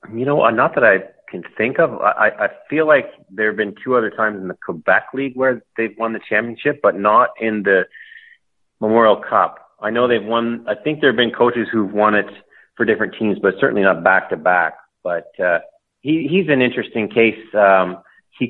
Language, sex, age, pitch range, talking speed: English, male, 30-49, 100-120 Hz, 200 wpm